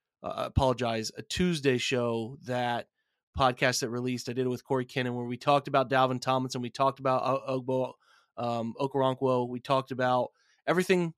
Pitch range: 125-140 Hz